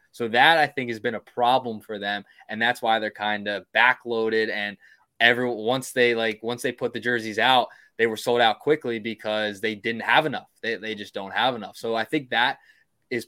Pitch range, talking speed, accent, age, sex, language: 110-130 Hz, 220 wpm, American, 20-39, male, English